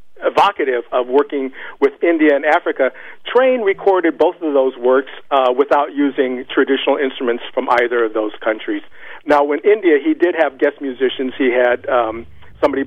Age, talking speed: 50-69, 165 wpm